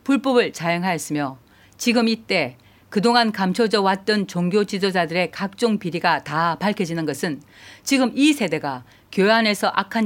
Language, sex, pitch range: Korean, female, 160-230 Hz